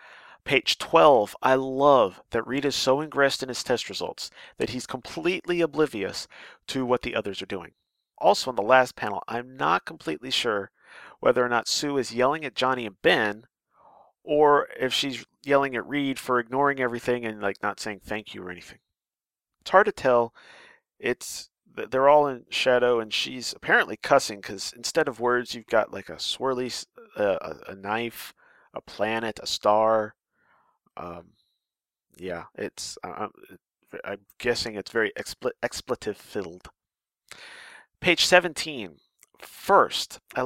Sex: male